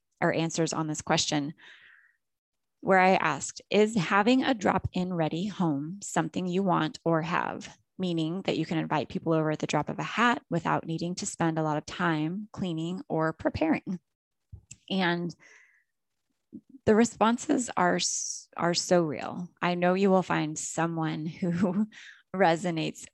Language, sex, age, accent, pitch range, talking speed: English, female, 20-39, American, 160-210 Hz, 150 wpm